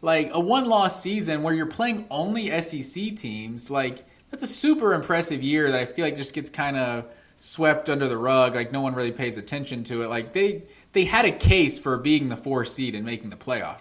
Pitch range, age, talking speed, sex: 120-170 Hz, 20-39, 220 wpm, male